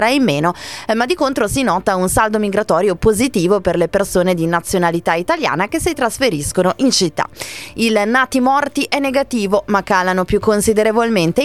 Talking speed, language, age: 160 wpm, Italian, 20-39